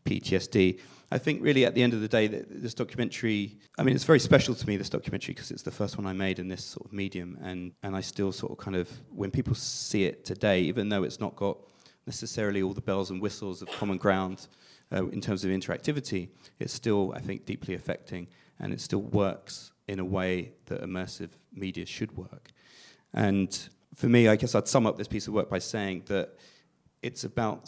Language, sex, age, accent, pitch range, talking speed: English, male, 30-49, British, 90-110 Hz, 215 wpm